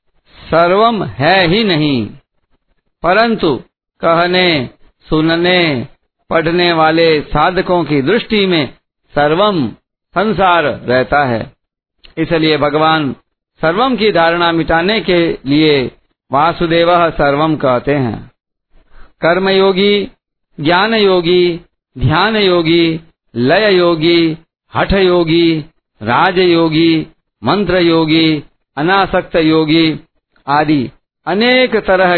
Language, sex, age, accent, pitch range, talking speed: Hindi, male, 50-69, native, 155-185 Hz, 80 wpm